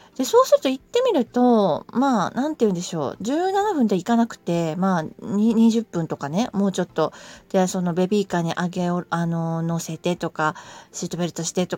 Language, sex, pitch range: Japanese, female, 165-230 Hz